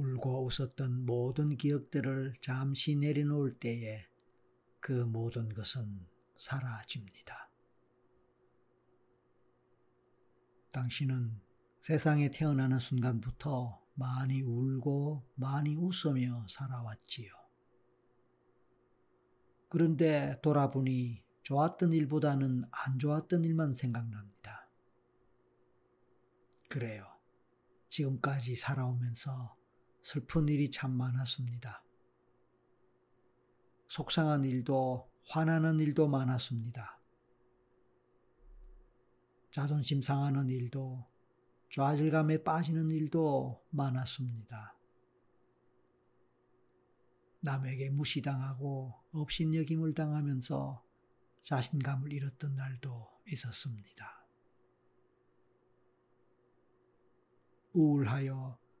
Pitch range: 120-145 Hz